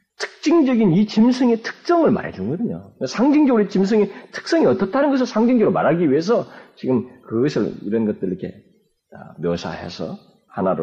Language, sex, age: Korean, male, 40-59